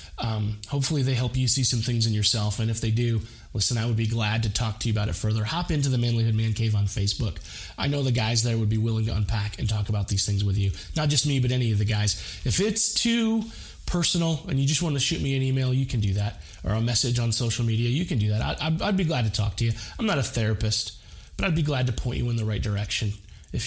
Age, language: 20-39, English